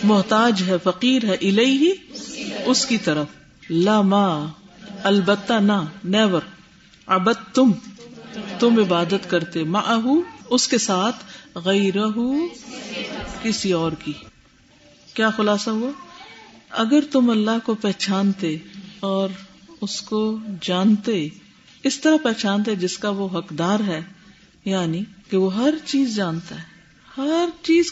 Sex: female